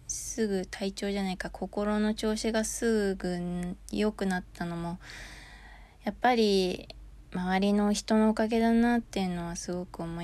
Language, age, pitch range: Japanese, 20-39, 170-195 Hz